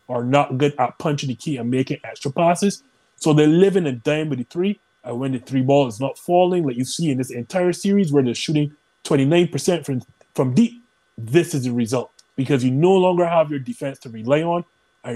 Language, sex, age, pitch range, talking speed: English, male, 30-49, 130-160 Hz, 220 wpm